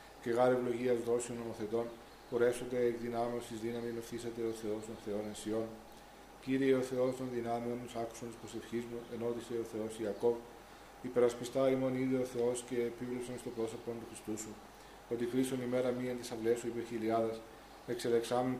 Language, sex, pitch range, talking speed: Greek, male, 115-125 Hz, 170 wpm